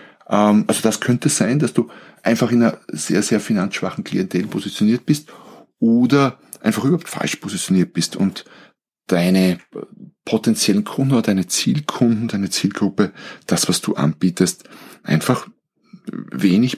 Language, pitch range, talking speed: German, 85-115 Hz, 130 wpm